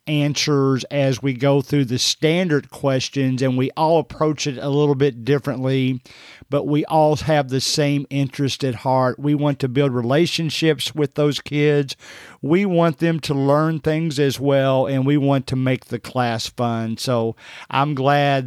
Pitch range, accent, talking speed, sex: 135-165 Hz, American, 170 wpm, male